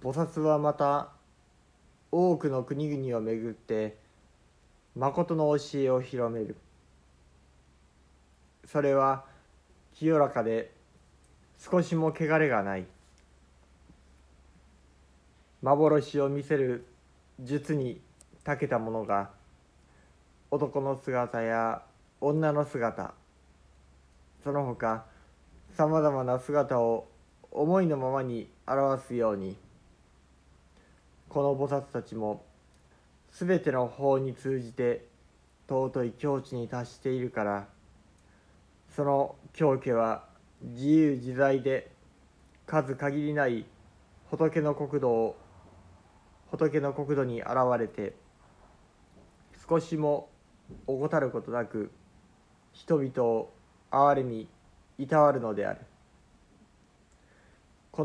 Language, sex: Japanese, male